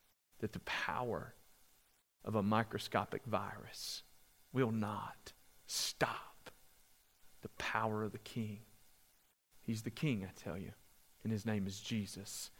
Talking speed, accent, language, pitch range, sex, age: 125 wpm, American, English, 105-125 Hz, male, 40-59